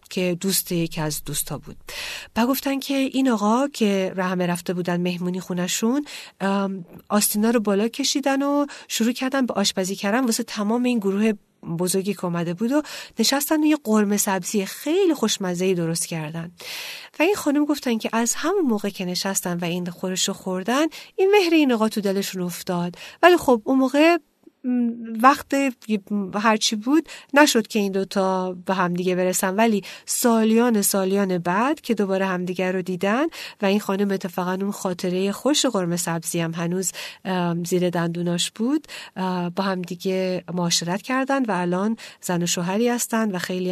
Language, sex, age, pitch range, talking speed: Persian, female, 40-59, 185-235 Hz, 165 wpm